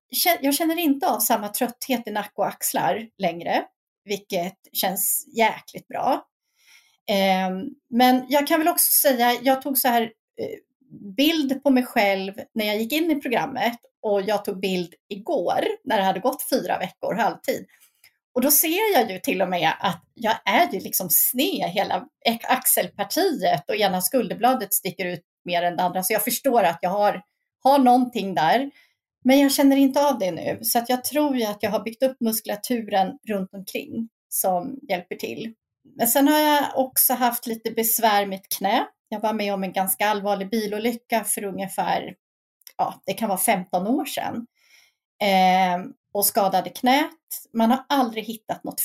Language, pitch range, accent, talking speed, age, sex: Swedish, 200-270 Hz, native, 165 wpm, 30-49, female